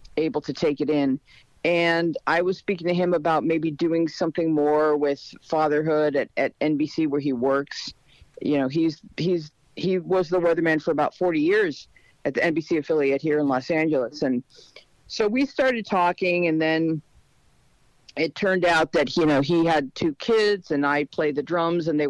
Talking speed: 185 wpm